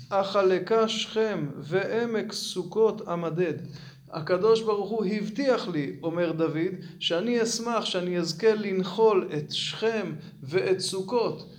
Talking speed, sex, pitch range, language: 115 wpm, male, 155-205 Hz, Hebrew